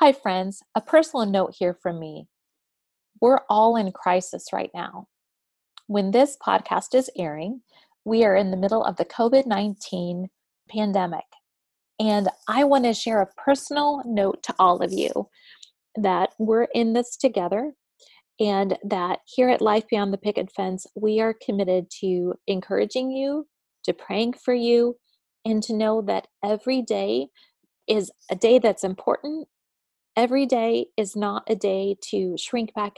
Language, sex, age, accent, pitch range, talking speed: English, female, 30-49, American, 190-235 Hz, 155 wpm